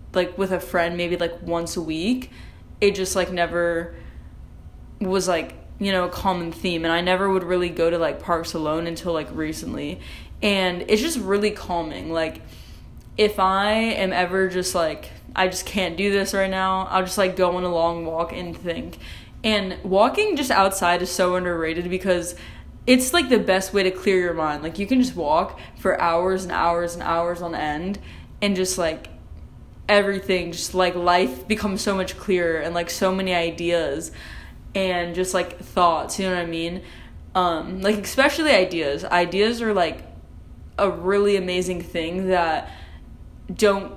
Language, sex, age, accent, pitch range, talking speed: English, female, 10-29, American, 170-195 Hz, 175 wpm